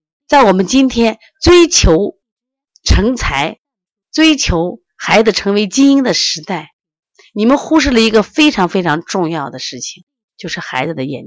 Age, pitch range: 30-49, 150-235 Hz